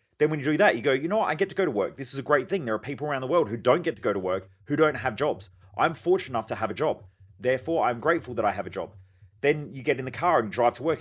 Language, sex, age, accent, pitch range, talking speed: English, male, 30-49, Australian, 110-145 Hz, 340 wpm